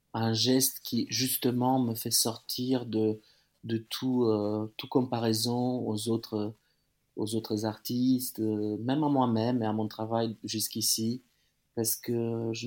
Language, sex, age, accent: French, male, 30-49, French